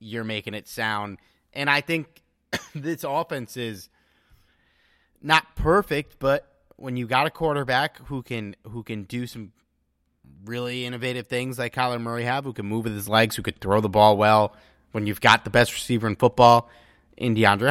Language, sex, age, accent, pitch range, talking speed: English, male, 30-49, American, 100-130 Hz, 180 wpm